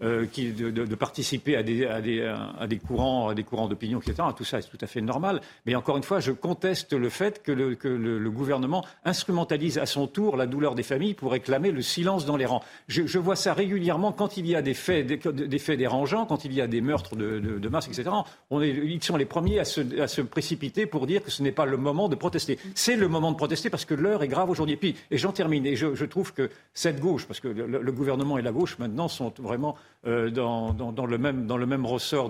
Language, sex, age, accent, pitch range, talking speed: French, male, 50-69, French, 120-160 Hz, 270 wpm